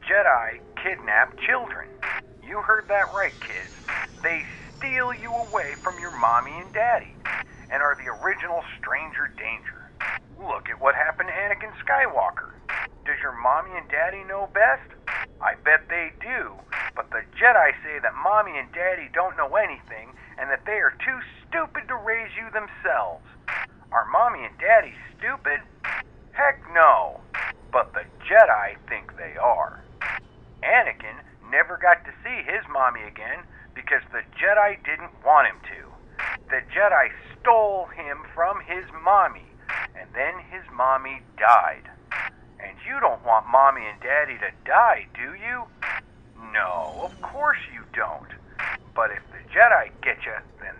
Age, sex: 40-59, male